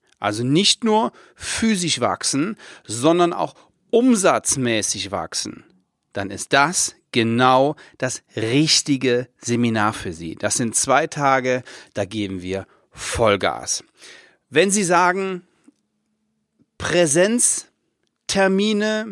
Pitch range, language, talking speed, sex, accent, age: 125-185 Hz, German, 95 wpm, male, German, 40-59